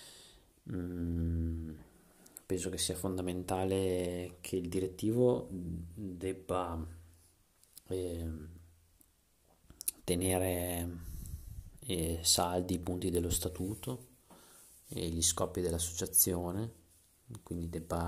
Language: Italian